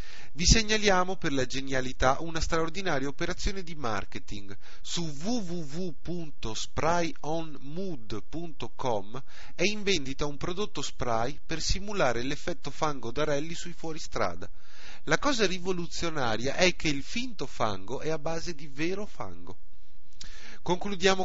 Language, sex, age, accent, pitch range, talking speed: Italian, male, 30-49, native, 130-180 Hz, 115 wpm